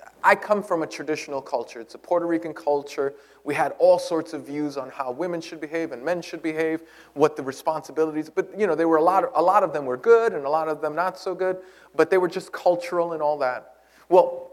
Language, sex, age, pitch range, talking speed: English, male, 30-49, 160-215 Hz, 250 wpm